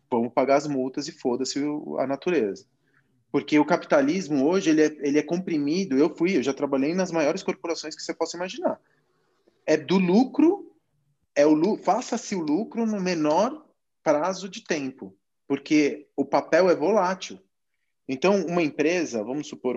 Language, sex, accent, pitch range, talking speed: Portuguese, male, Brazilian, 130-175 Hz, 160 wpm